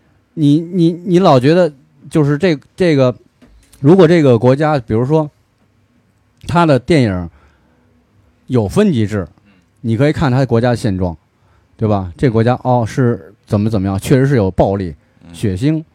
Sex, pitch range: male, 105-150 Hz